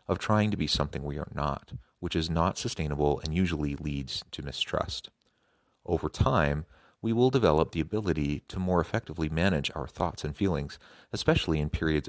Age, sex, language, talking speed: 30-49, male, English, 175 wpm